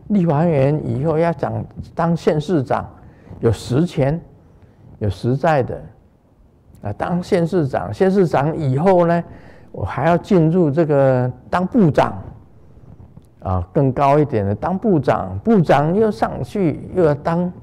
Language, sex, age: Chinese, male, 50-69